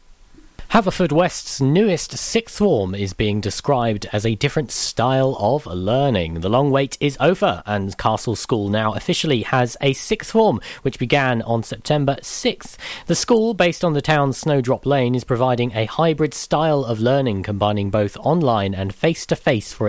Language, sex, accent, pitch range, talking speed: English, male, British, 110-165 Hz, 165 wpm